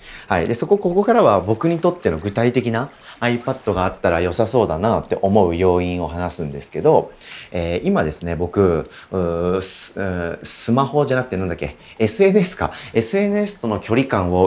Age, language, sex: 40-59, Japanese, male